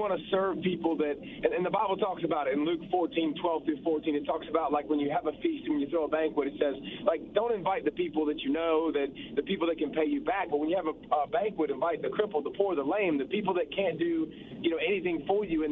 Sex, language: male, English